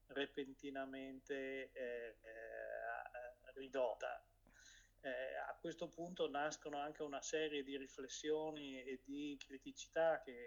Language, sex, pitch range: Italian, male, 130-145 Hz